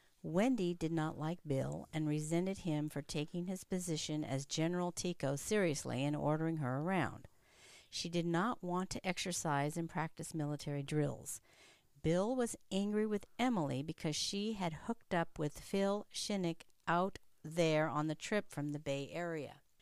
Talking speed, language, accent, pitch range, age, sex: 155 wpm, English, American, 155-205 Hz, 50-69, female